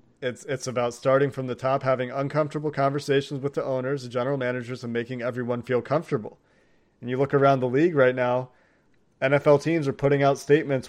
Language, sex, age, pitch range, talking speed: English, male, 30-49, 125-140 Hz, 195 wpm